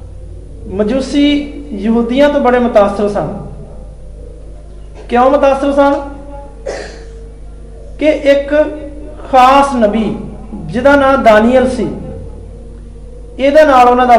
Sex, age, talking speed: male, 50-69, 70 wpm